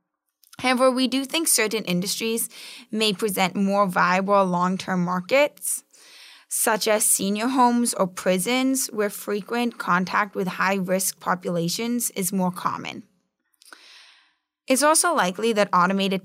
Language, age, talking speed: English, 10-29, 120 wpm